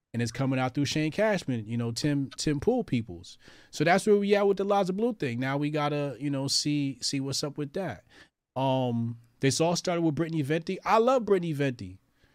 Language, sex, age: English, male, 30-49